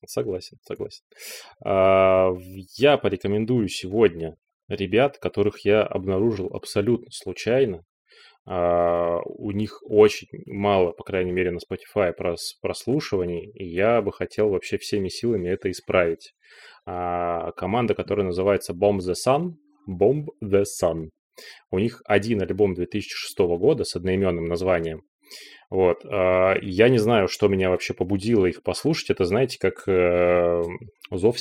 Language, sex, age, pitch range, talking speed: Russian, male, 20-39, 90-115 Hz, 120 wpm